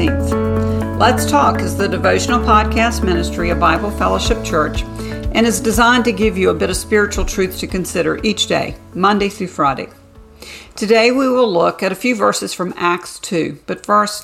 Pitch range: 160-210 Hz